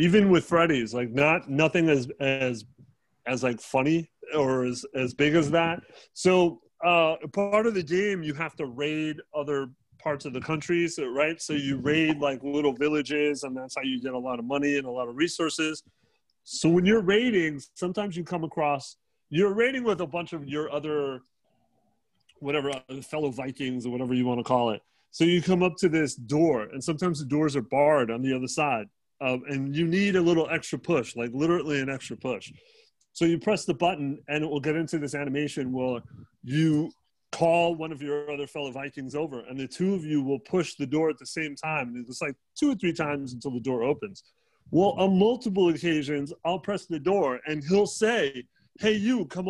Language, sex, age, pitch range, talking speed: English, male, 30-49, 140-170 Hz, 205 wpm